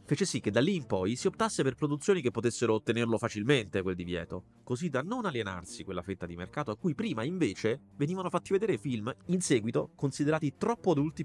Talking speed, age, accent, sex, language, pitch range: 205 wpm, 30-49, native, male, Italian, 95-145 Hz